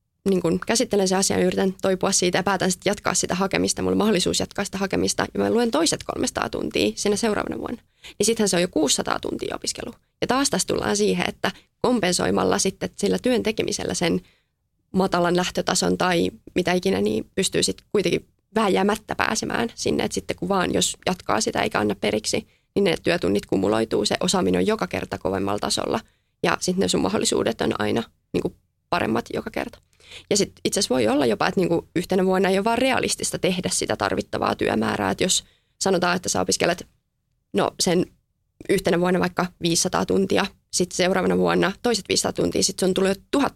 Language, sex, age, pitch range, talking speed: Finnish, female, 20-39, 120-200 Hz, 185 wpm